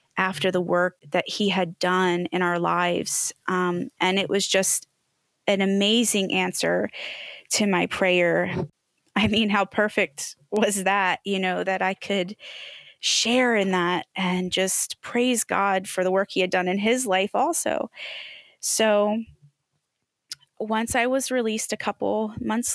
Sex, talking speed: female, 150 wpm